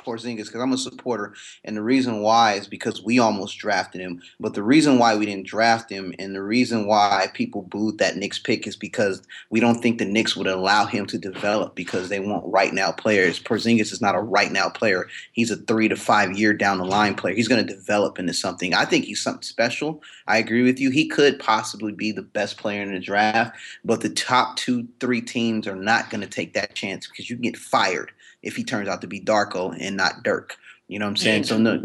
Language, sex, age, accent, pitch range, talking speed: English, male, 30-49, American, 105-125 Hz, 240 wpm